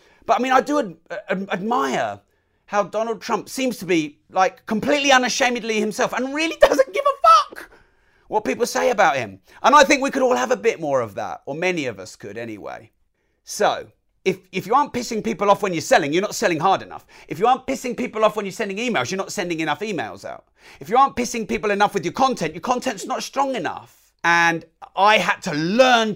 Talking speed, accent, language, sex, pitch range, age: 220 wpm, British, English, male, 190-265 Hz, 40-59